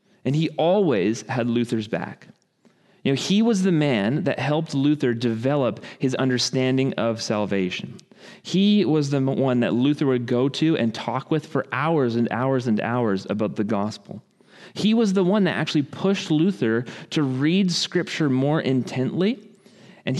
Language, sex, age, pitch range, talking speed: English, male, 30-49, 115-165 Hz, 165 wpm